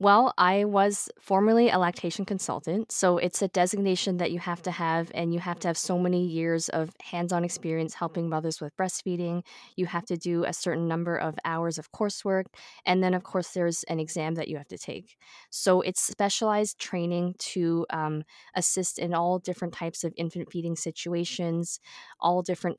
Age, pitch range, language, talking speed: 20-39, 165-185 Hz, English, 185 wpm